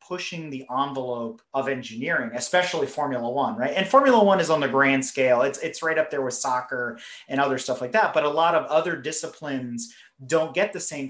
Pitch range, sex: 135-165 Hz, male